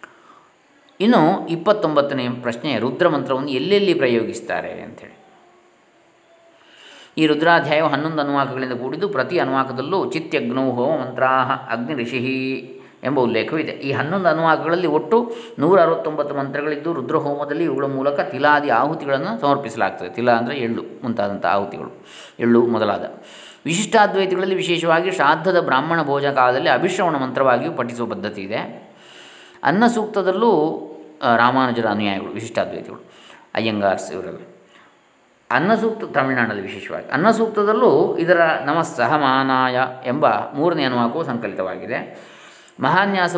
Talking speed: 95 wpm